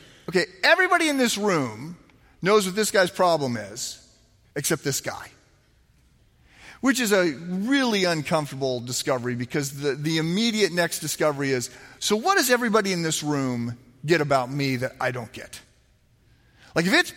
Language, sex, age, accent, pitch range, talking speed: English, male, 40-59, American, 155-215 Hz, 155 wpm